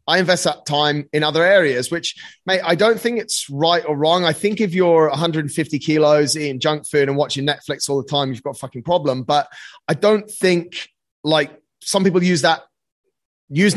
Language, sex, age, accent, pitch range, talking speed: English, male, 30-49, British, 145-175 Hz, 200 wpm